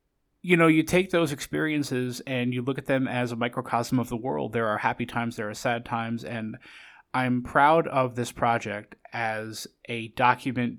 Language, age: English, 20-39